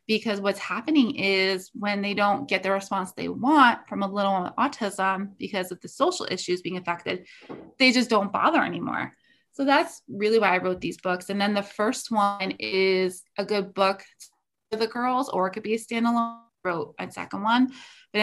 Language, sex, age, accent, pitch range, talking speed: English, female, 20-39, American, 190-230 Hz, 195 wpm